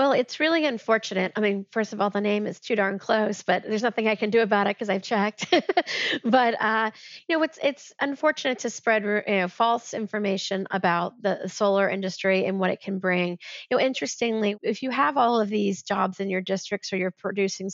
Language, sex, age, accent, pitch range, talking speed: English, female, 40-59, American, 195-250 Hz, 215 wpm